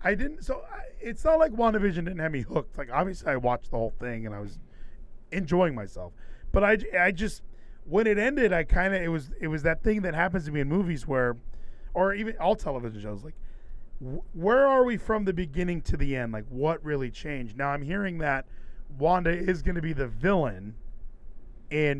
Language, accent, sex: English, American, male